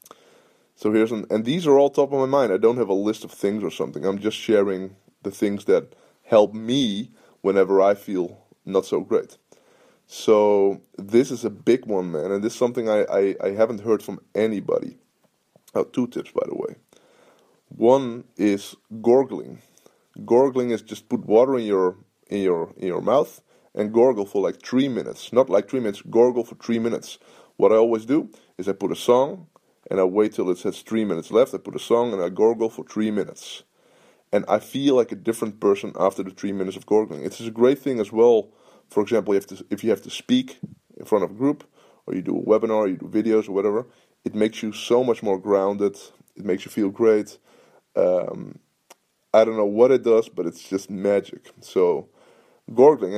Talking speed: 210 wpm